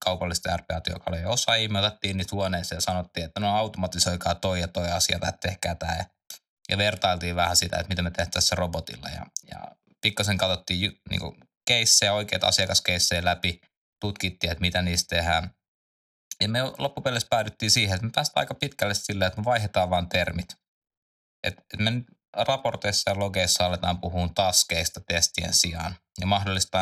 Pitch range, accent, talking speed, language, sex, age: 90-105 Hz, native, 155 wpm, Finnish, male, 20-39